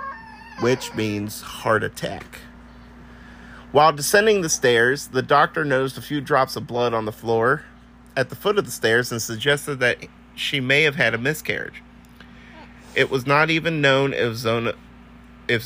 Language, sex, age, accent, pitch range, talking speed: English, male, 30-49, American, 115-155 Hz, 160 wpm